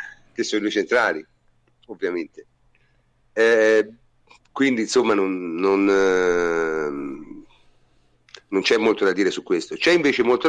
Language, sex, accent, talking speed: Italian, male, native, 120 wpm